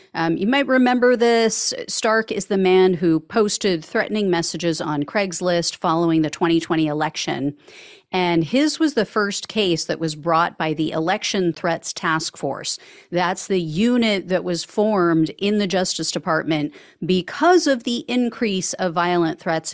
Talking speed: 155 wpm